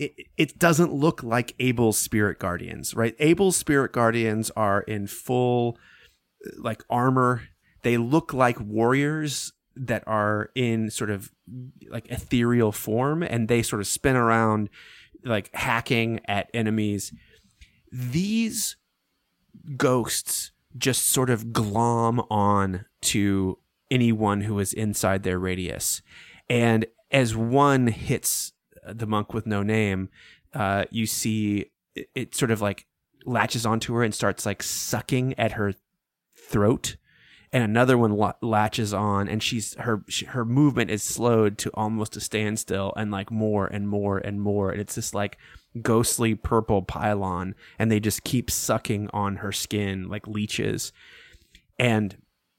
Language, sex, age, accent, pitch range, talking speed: English, male, 30-49, American, 105-120 Hz, 135 wpm